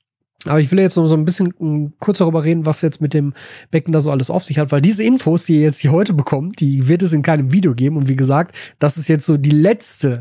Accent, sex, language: German, male, German